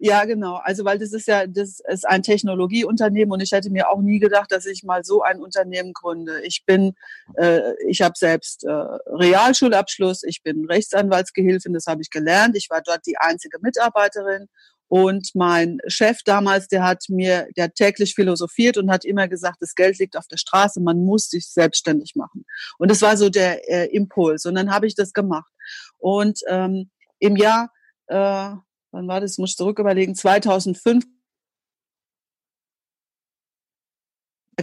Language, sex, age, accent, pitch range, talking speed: German, female, 40-59, German, 180-210 Hz, 170 wpm